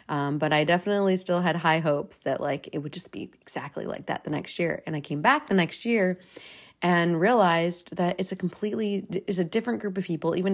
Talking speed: 230 wpm